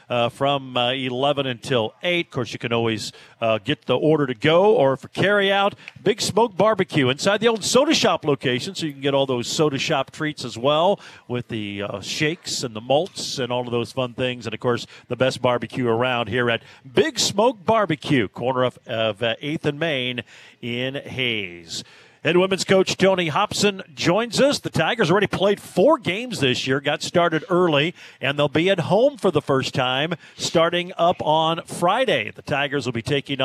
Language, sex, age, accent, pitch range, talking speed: English, male, 50-69, American, 125-170 Hz, 200 wpm